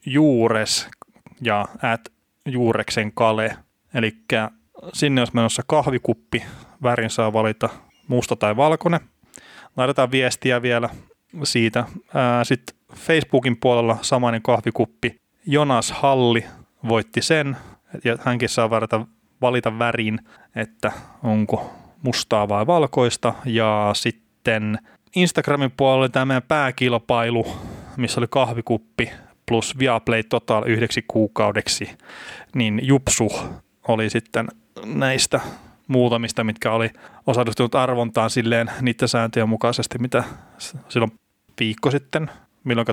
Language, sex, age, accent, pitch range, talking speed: Finnish, male, 20-39, native, 115-130 Hz, 95 wpm